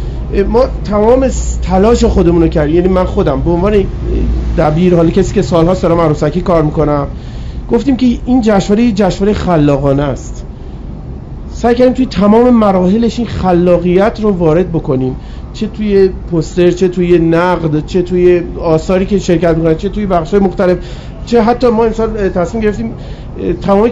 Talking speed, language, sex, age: 150 wpm, Persian, male, 40-59